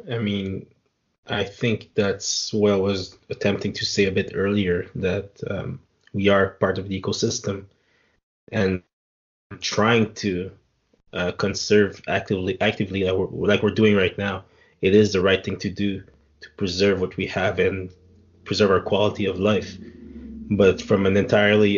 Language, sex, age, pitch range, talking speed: English, male, 20-39, 95-105 Hz, 160 wpm